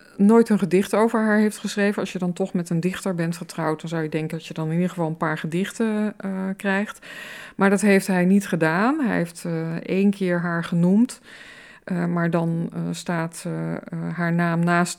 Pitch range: 170-195 Hz